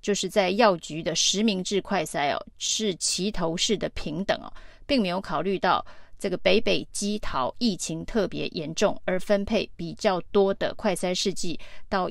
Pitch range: 185-220 Hz